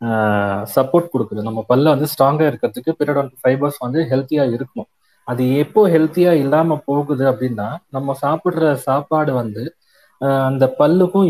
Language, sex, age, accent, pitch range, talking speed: Tamil, male, 30-49, native, 135-170 Hz, 135 wpm